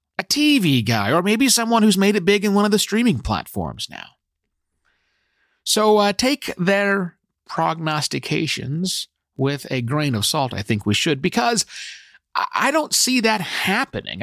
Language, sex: English, male